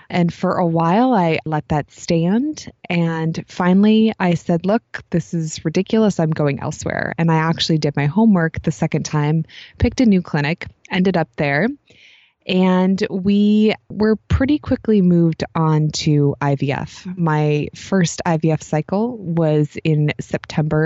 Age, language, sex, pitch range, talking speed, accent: 20-39, English, female, 155-195 Hz, 145 wpm, American